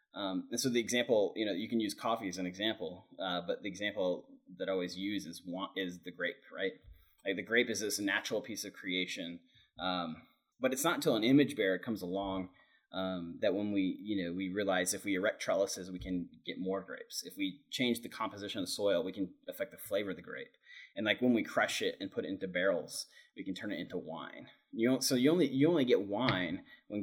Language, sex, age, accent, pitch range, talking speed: English, male, 30-49, American, 95-125 Hz, 235 wpm